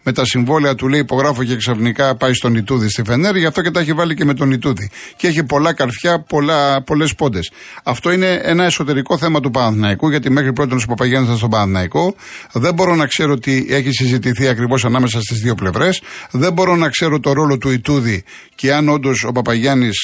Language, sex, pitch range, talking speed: Greek, male, 125-170 Hz, 210 wpm